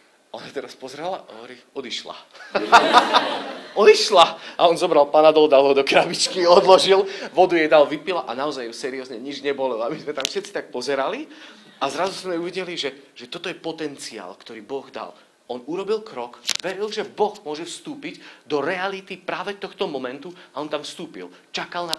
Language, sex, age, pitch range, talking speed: Slovak, male, 40-59, 120-170 Hz, 175 wpm